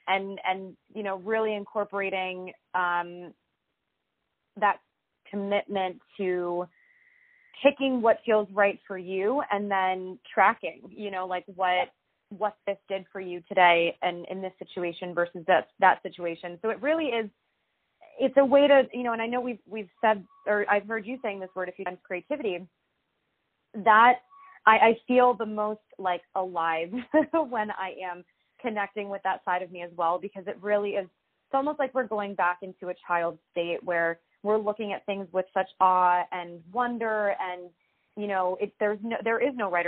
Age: 20-39